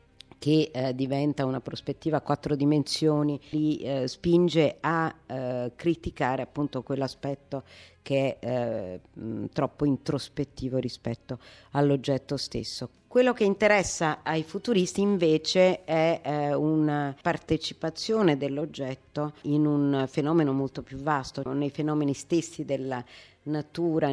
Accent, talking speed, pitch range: native, 100 wpm, 130-155 Hz